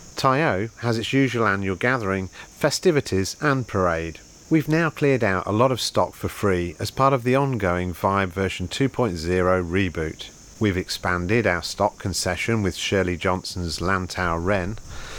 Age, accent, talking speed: 40-59, British, 150 wpm